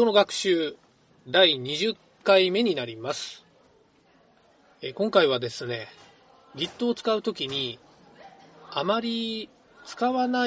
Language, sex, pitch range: Japanese, male, 185-255 Hz